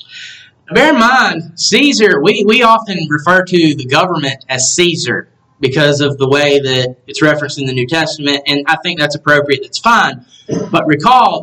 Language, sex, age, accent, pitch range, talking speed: English, male, 30-49, American, 140-190 Hz, 175 wpm